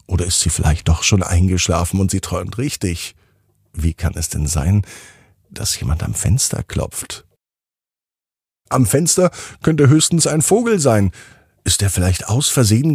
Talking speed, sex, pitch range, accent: 155 wpm, male, 90-110 Hz, German